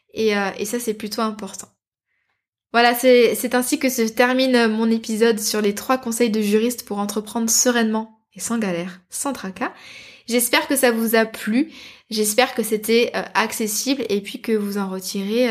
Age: 20-39